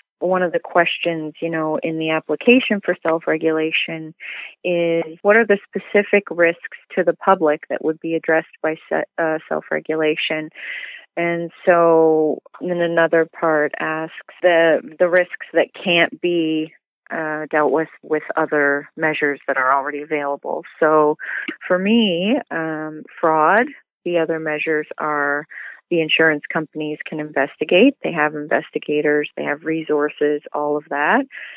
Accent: American